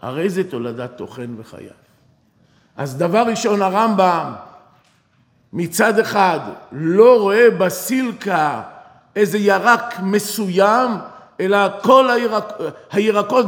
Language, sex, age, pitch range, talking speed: Hebrew, male, 50-69, 175-245 Hz, 95 wpm